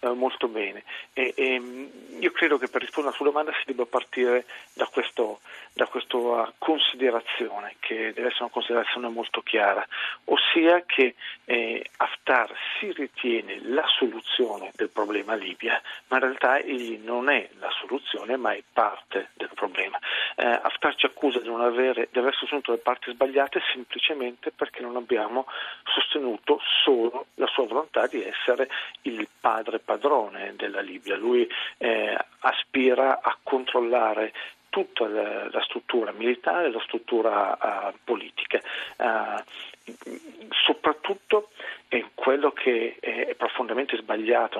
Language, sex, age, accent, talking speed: Italian, male, 40-59, native, 130 wpm